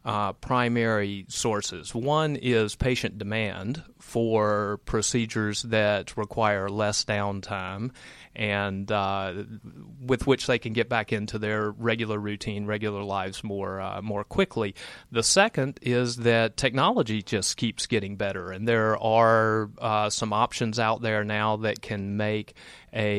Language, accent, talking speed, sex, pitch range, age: English, American, 135 wpm, male, 105-115 Hz, 30-49